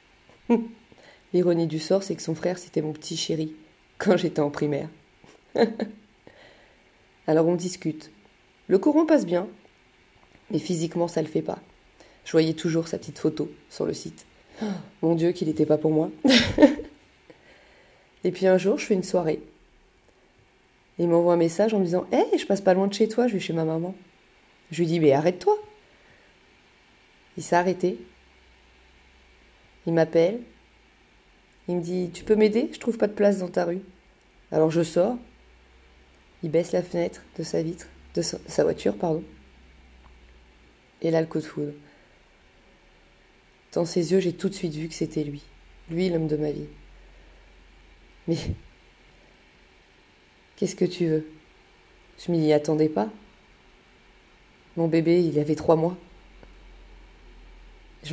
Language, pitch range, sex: French, 150-185 Hz, female